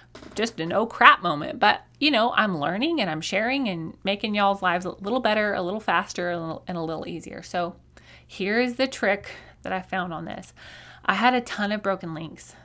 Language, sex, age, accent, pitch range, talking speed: English, female, 20-39, American, 165-200 Hz, 205 wpm